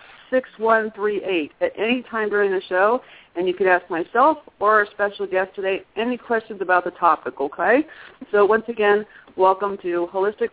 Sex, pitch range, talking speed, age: female, 180-220 Hz, 180 wpm, 40-59